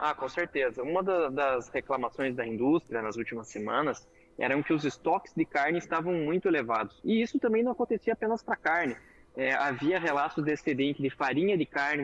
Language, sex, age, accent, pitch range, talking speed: Portuguese, male, 20-39, Brazilian, 130-175 Hz, 190 wpm